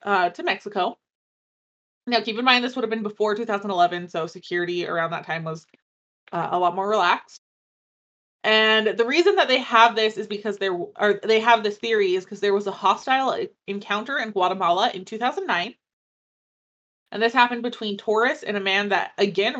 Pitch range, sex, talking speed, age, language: 185-230 Hz, female, 180 wpm, 20-39, English